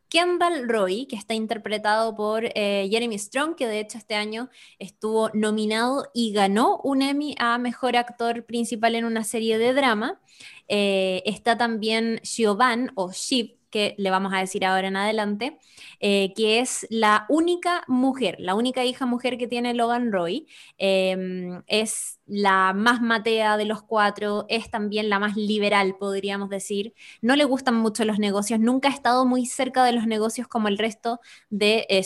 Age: 20-39